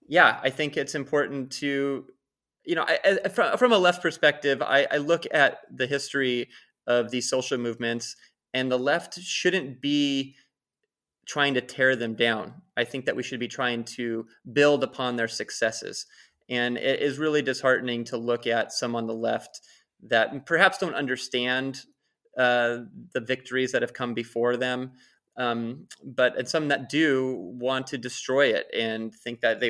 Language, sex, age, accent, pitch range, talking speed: English, male, 30-49, American, 120-145 Hz, 170 wpm